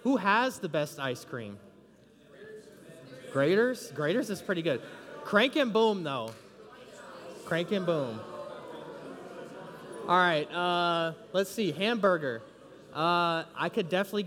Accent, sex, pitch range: American, male, 155-205 Hz